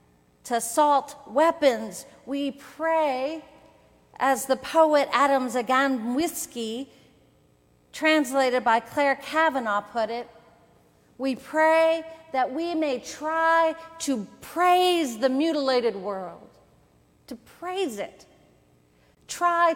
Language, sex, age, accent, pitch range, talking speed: English, female, 40-59, American, 245-300 Hz, 95 wpm